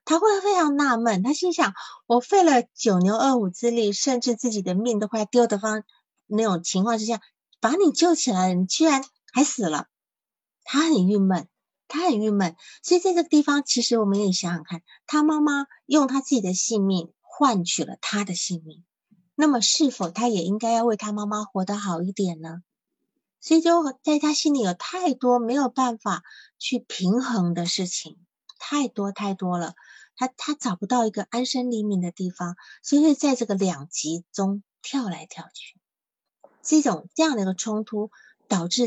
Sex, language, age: female, Chinese, 30-49